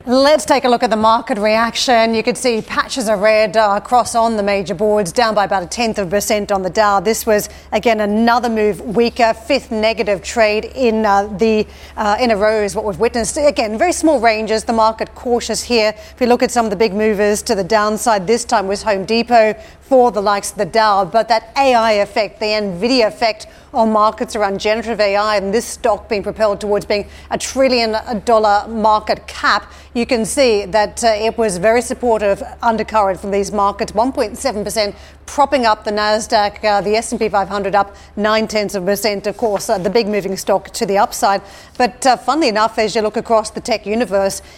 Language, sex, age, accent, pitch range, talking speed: English, female, 40-59, Australian, 210-235 Hz, 205 wpm